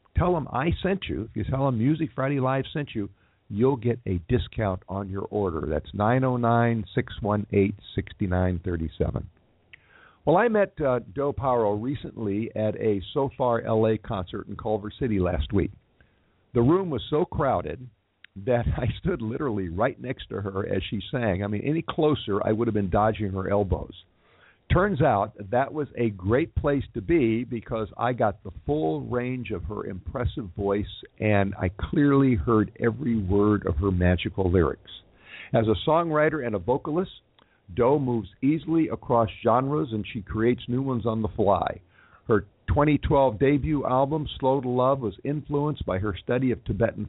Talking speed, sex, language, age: 165 wpm, male, English, 50-69